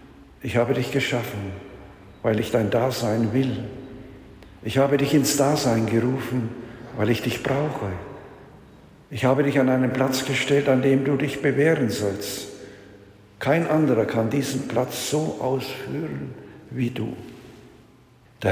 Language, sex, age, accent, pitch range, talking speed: German, male, 60-79, German, 110-135 Hz, 135 wpm